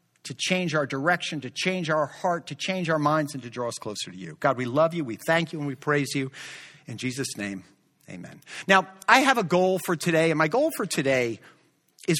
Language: English